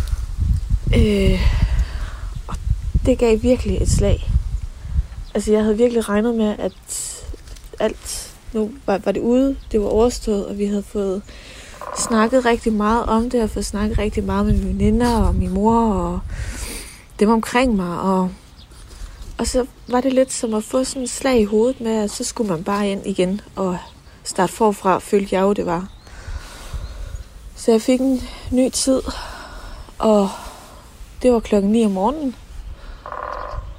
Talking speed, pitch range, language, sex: 160 wpm, 175-235 Hz, Danish, female